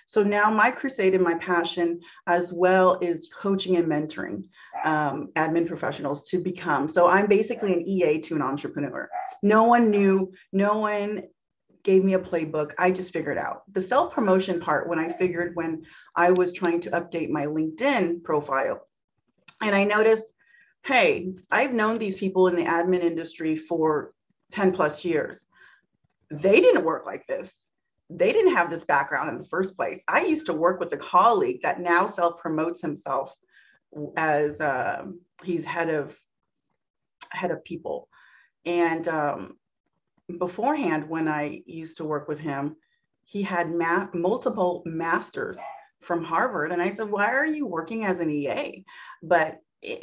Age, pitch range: 30-49, 165-210 Hz